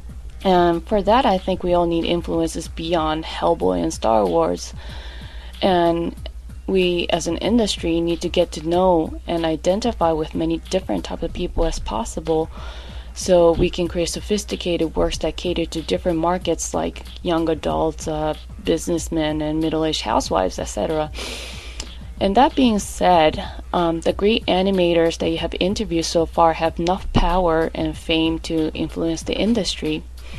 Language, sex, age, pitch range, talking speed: English, female, 20-39, 160-185 Hz, 155 wpm